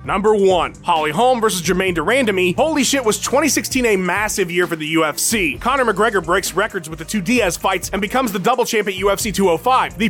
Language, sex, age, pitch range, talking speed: English, male, 30-49, 180-245 Hz, 210 wpm